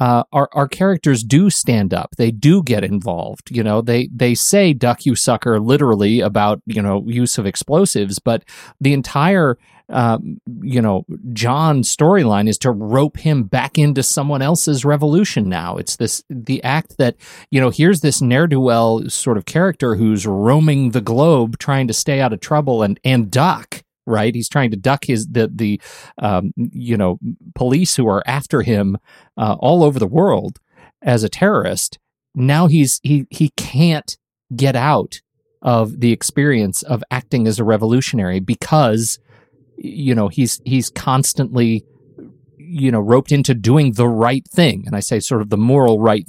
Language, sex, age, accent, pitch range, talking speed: English, male, 40-59, American, 115-150 Hz, 170 wpm